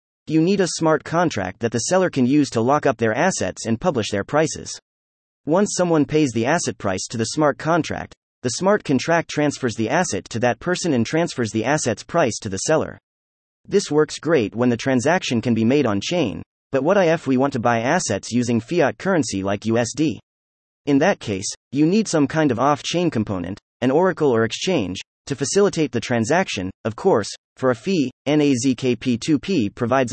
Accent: American